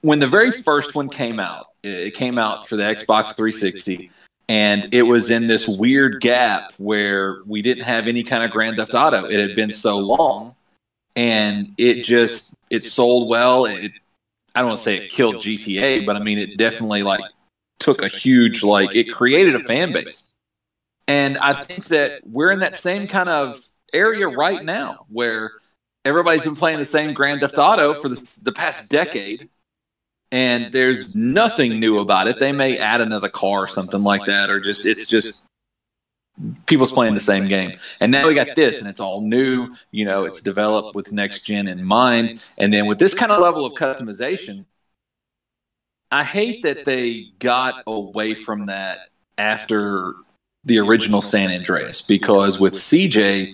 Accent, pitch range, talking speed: American, 105-130 Hz, 180 wpm